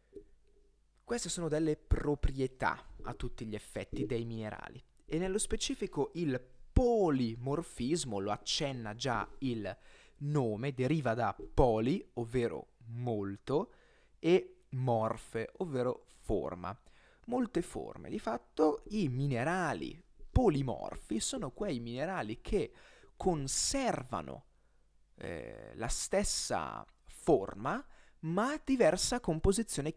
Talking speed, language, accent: 100 wpm, Italian, native